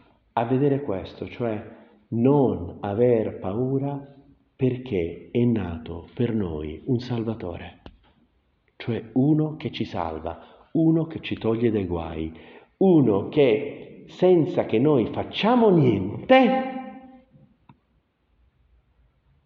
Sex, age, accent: male, 50-69, native